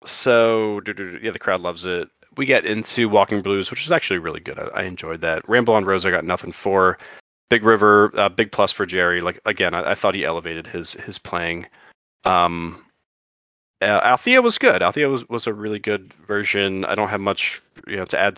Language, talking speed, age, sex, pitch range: English, 205 wpm, 30-49, male, 90-110 Hz